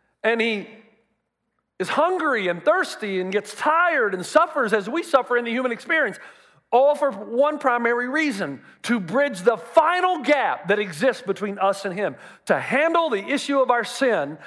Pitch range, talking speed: 220-295 Hz, 170 wpm